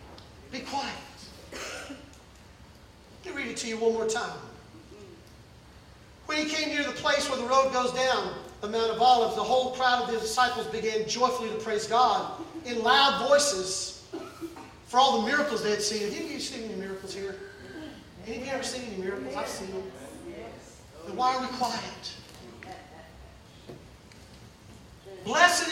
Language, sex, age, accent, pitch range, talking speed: English, male, 40-59, American, 245-315 Hz, 155 wpm